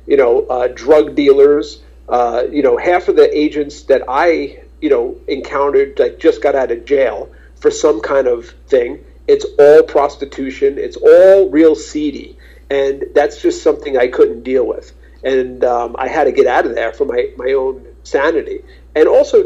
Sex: male